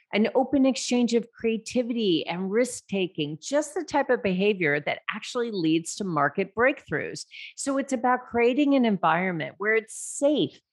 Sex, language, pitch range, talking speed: female, English, 180-245 Hz, 150 wpm